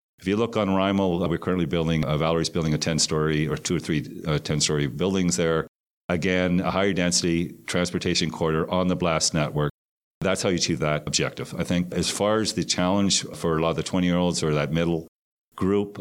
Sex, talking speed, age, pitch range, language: male, 200 wpm, 40-59, 80-90 Hz, English